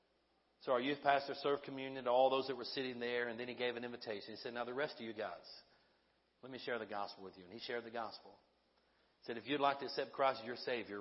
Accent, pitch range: American, 115-140 Hz